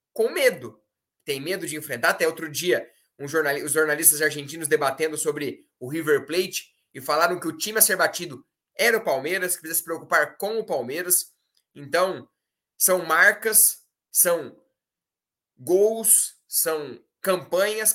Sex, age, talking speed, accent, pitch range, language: male, 20-39, 140 wpm, Brazilian, 160-215 Hz, Portuguese